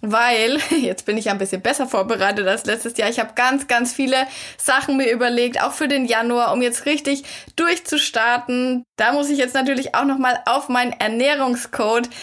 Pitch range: 240-280 Hz